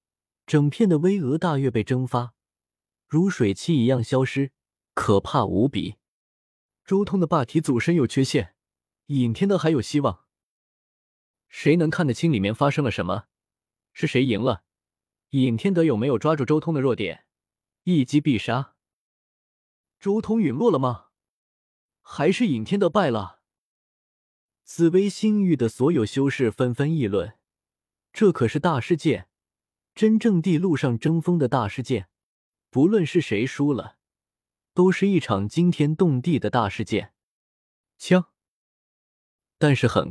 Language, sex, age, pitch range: Chinese, male, 20-39, 115-165 Hz